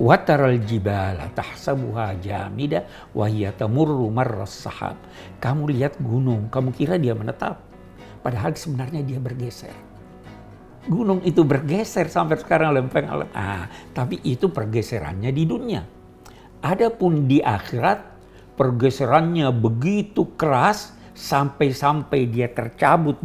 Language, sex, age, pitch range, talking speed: Indonesian, male, 60-79, 105-140 Hz, 105 wpm